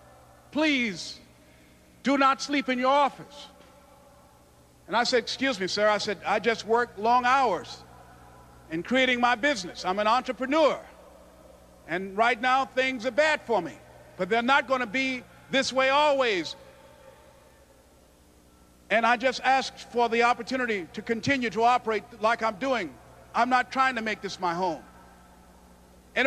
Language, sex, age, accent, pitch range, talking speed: English, male, 50-69, American, 235-300 Hz, 155 wpm